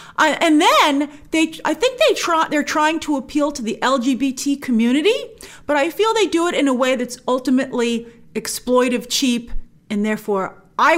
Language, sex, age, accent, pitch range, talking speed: English, female, 40-59, American, 215-320 Hz, 175 wpm